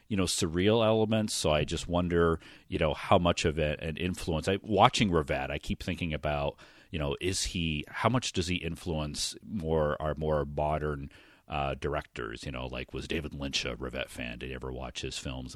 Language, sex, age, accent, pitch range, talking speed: English, male, 40-59, American, 75-90 Hz, 200 wpm